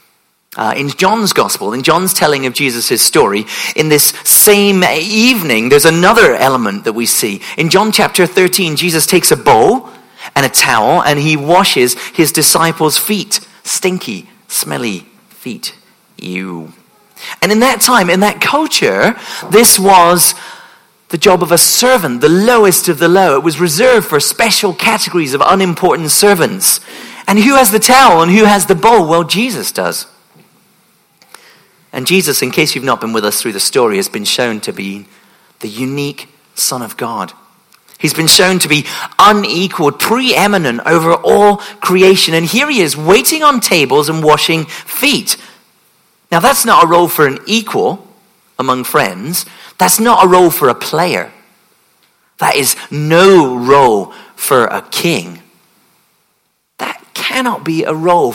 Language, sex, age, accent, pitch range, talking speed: English, male, 40-59, British, 155-210 Hz, 155 wpm